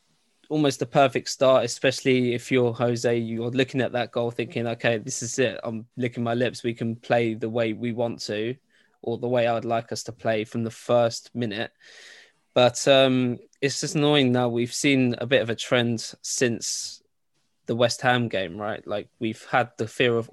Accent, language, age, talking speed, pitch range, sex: British, English, 20-39, 200 wpm, 115-130 Hz, male